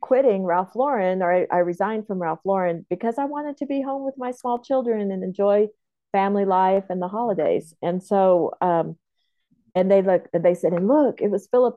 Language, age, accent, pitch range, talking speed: English, 40-59, American, 175-220 Hz, 210 wpm